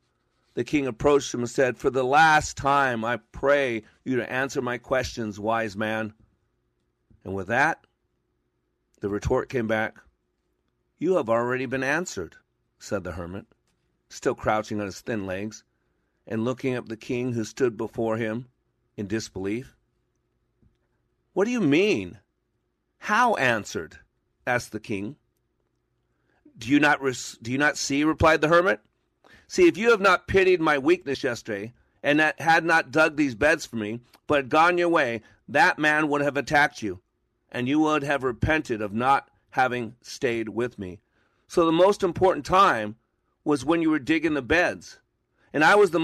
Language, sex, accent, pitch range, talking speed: English, male, American, 110-155 Hz, 165 wpm